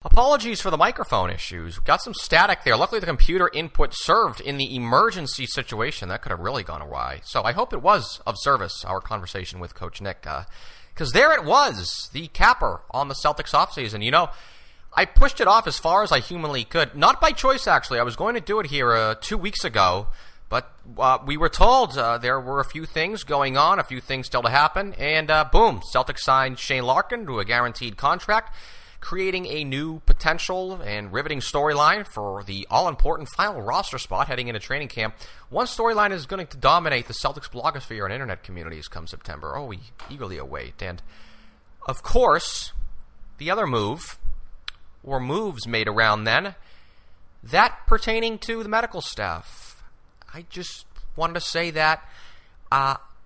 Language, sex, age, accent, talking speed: English, male, 30-49, American, 185 wpm